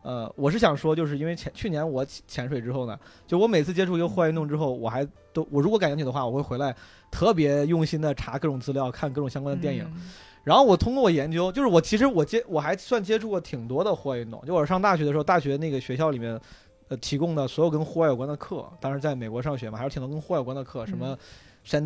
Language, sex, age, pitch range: Chinese, male, 20-39, 130-165 Hz